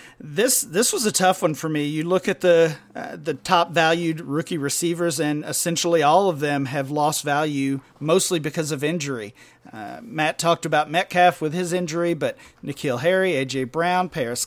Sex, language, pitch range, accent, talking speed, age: male, English, 140-170 Hz, American, 185 wpm, 40-59